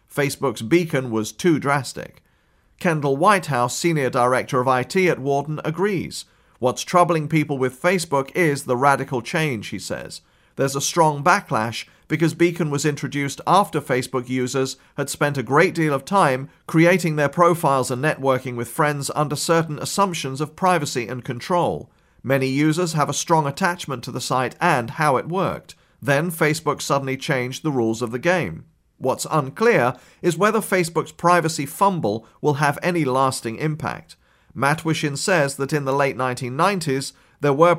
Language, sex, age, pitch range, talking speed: English, male, 40-59, 130-165 Hz, 160 wpm